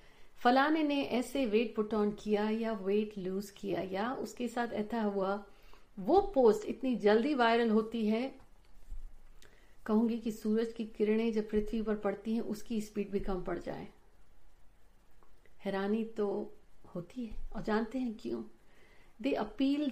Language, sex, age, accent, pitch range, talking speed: Hindi, female, 50-69, native, 200-240 Hz, 150 wpm